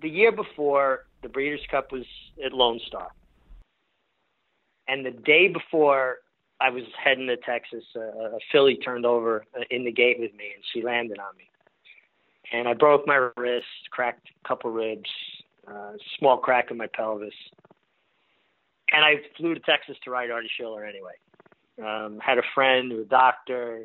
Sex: male